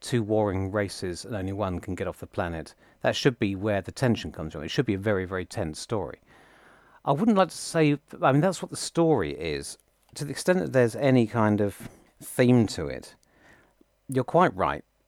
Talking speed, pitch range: 215 wpm, 90-125 Hz